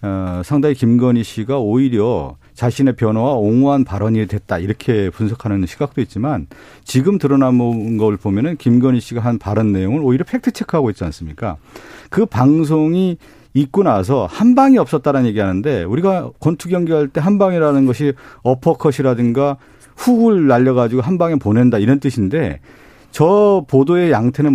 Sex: male